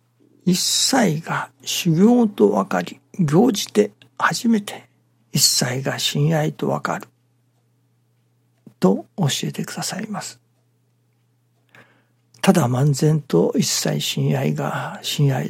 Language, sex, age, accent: Japanese, male, 60-79, native